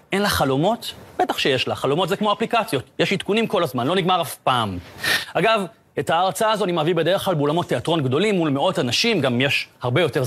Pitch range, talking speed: 150-205 Hz, 210 wpm